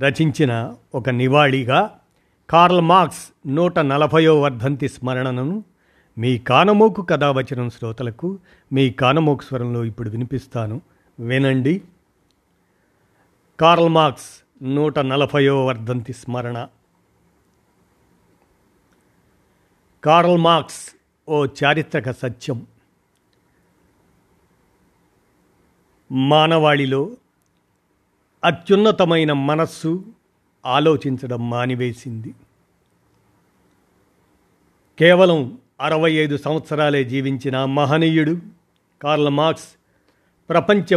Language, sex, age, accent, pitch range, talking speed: Telugu, male, 50-69, native, 130-165 Hz, 60 wpm